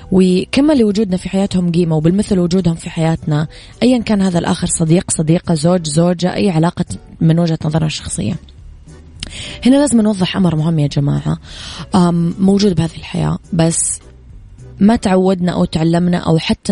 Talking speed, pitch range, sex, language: 145 wpm, 150-185 Hz, female, Arabic